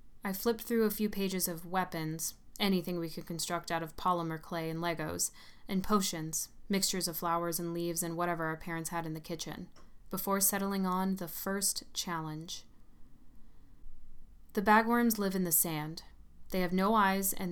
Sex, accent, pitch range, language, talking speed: female, American, 170-195 Hz, English, 170 wpm